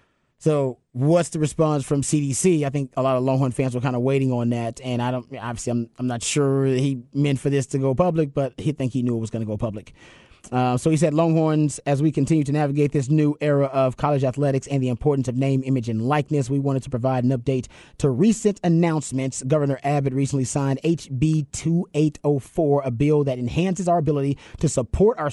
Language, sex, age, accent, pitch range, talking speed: English, male, 30-49, American, 125-150 Hz, 220 wpm